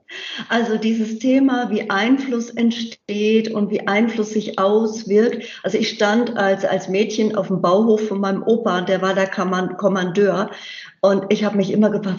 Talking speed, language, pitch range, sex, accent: 165 wpm, German, 200-230 Hz, female, German